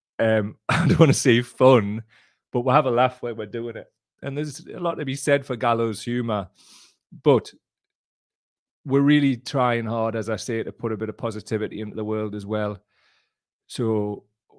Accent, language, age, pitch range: British, English, 30-49, 105-125 Hz